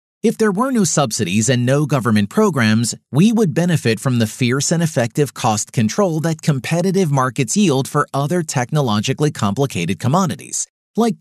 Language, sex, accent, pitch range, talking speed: English, male, American, 125-175 Hz, 155 wpm